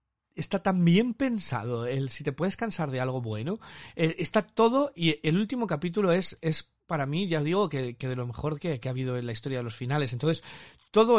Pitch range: 125-165 Hz